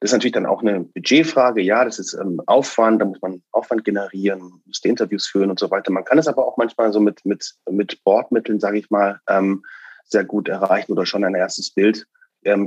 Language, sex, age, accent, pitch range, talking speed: German, male, 30-49, German, 100-115 Hz, 225 wpm